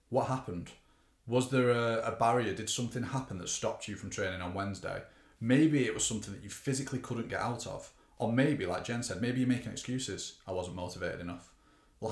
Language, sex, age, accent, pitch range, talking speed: English, male, 30-49, British, 90-115 Hz, 205 wpm